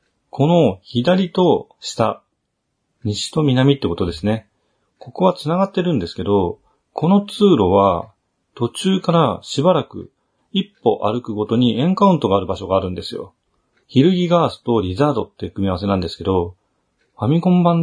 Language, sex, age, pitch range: Japanese, male, 40-59, 100-155 Hz